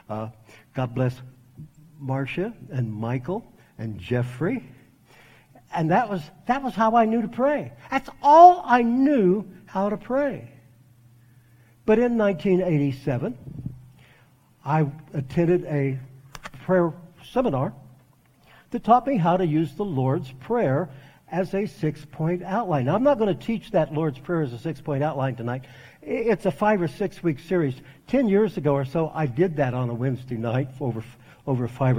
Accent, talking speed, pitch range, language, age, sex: American, 155 wpm, 125-180 Hz, English, 60-79, male